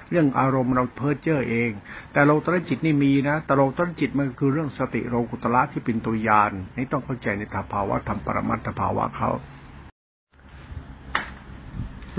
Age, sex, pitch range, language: 60-79, male, 115-145 Hz, Thai